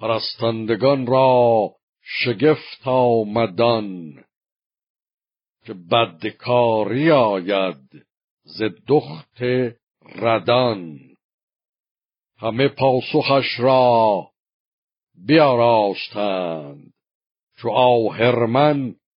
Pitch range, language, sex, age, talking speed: 110-130 Hz, Persian, male, 60-79, 50 wpm